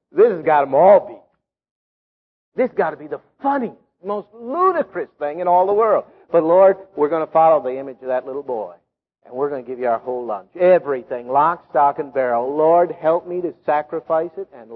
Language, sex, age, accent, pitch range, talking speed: English, male, 50-69, American, 145-230 Hz, 215 wpm